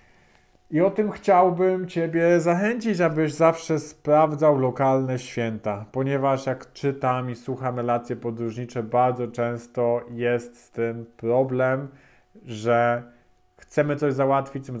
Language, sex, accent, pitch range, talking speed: Polish, male, native, 120-140 Hz, 120 wpm